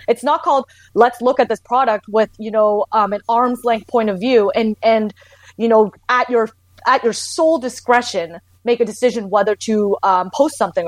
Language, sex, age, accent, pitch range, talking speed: English, female, 30-49, American, 205-245 Hz, 200 wpm